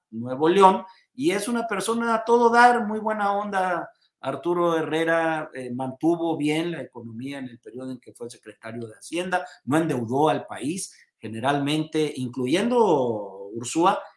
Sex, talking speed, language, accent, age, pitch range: male, 150 wpm, Spanish, Mexican, 50-69, 125-180 Hz